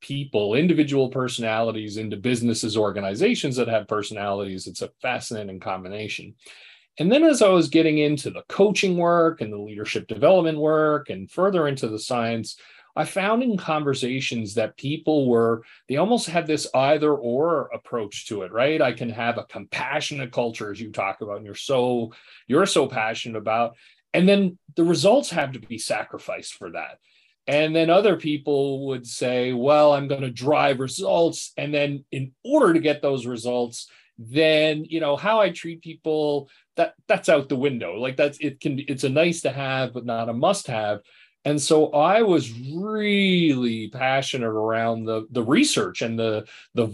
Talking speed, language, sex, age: 175 wpm, English, male, 40-59